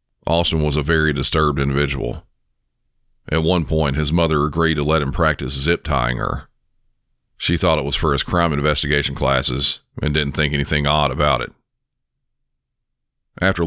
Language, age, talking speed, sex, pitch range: English, 40-59, 155 wpm, male, 70-80 Hz